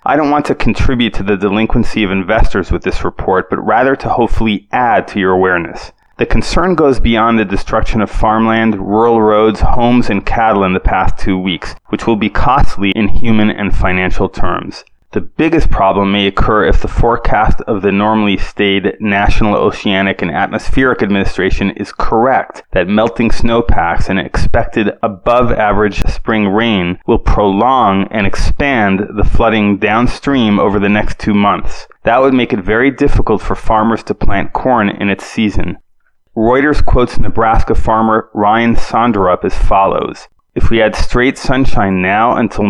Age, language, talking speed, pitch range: 30-49, English, 165 wpm, 100-115 Hz